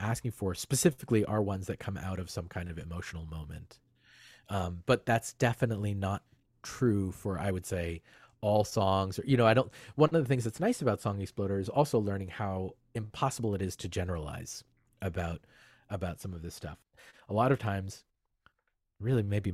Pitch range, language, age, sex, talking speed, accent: 90-120 Hz, English, 30-49, male, 185 wpm, American